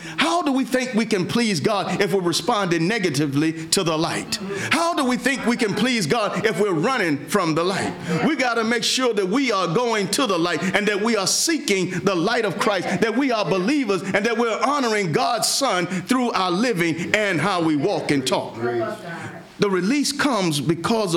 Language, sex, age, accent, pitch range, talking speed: English, male, 50-69, American, 175-230 Hz, 205 wpm